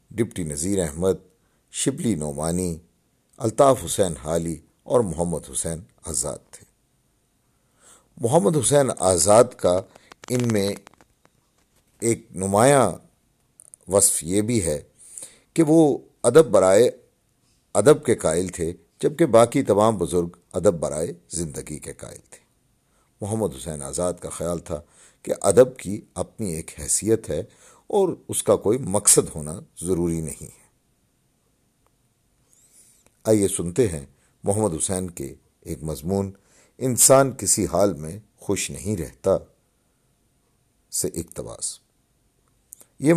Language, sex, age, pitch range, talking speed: Urdu, male, 50-69, 85-115 Hz, 115 wpm